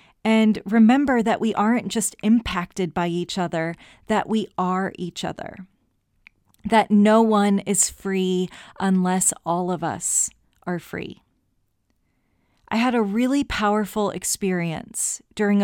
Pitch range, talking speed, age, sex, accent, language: 185-225 Hz, 125 wpm, 30-49, female, American, English